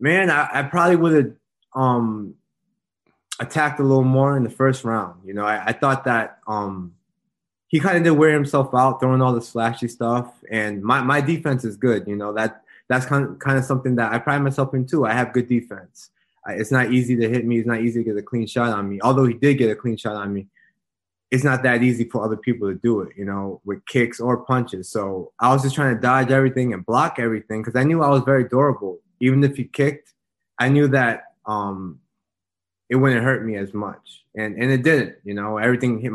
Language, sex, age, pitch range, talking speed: English, male, 20-39, 105-135 Hz, 235 wpm